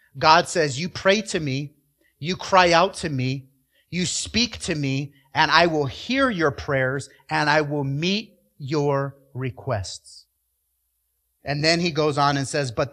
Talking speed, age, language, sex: 165 wpm, 30-49, English, male